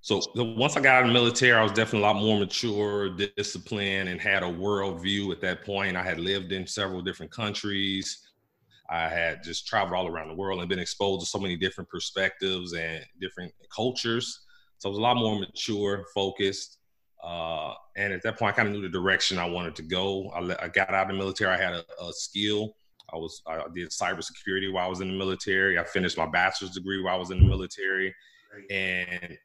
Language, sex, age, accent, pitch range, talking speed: English, male, 30-49, American, 90-100 Hz, 225 wpm